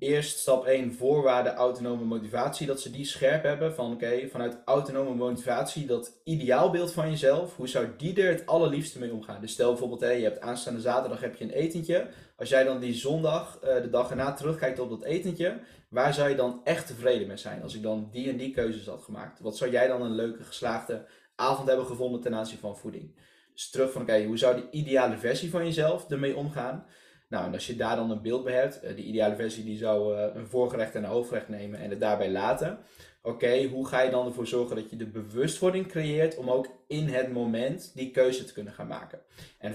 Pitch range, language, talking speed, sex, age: 110-135 Hz, Dutch, 225 wpm, male, 20-39